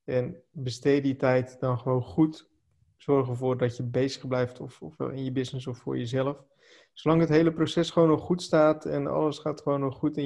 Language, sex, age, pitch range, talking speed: Dutch, male, 20-39, 130-155 Hz, 210 wpm